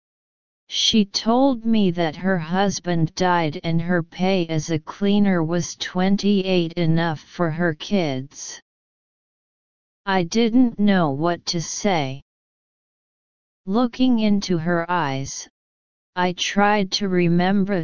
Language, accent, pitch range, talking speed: English, American, 165-195 Hz, 110 wpm